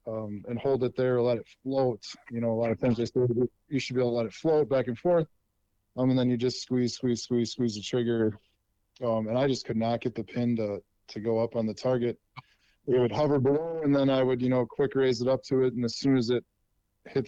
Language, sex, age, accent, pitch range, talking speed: English, male, 20-39, American, 110-130 Hz, 265 wpm